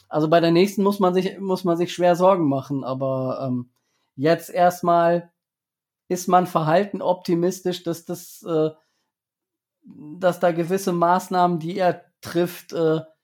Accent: German